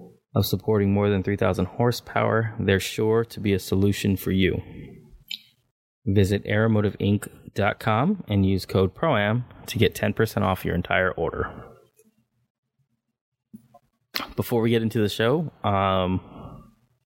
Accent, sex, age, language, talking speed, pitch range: American, male, 20-39, English, 120 wpm, 100-120 Hz